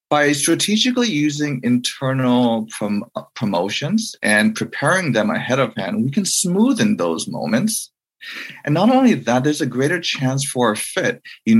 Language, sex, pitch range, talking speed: English, male, 115-185 Hz, 145 wpm